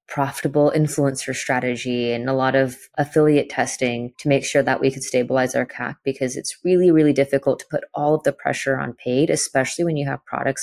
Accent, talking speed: American, 205 wpm